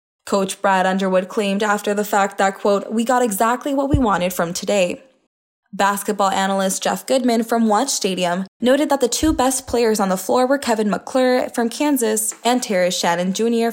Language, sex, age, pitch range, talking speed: English, female, 10-29, 195-250 Hz, 185 wpm